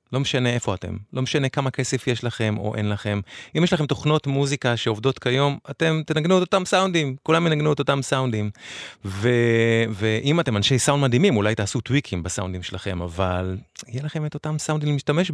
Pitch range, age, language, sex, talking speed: 110-140 Hz, 30-49, English, male, 185 wpm